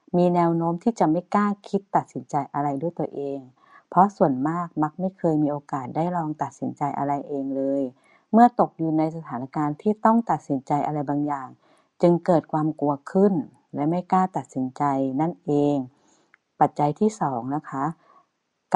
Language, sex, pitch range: Thai, female, 145-190 Hz